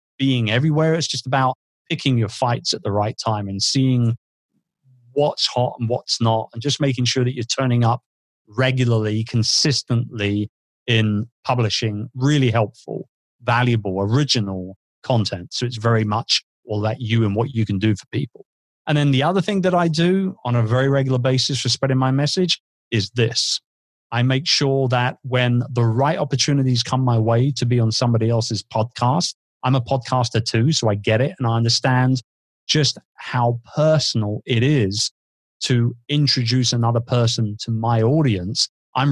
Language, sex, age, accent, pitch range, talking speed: English, male, 30-49, British, 115-135 Hz, 170 wpm